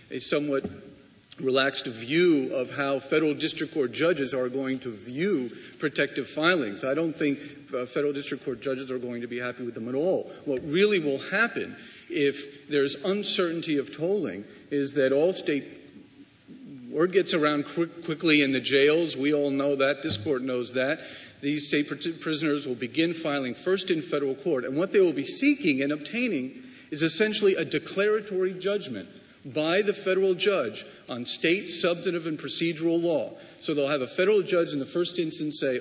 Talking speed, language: 175 wpm, English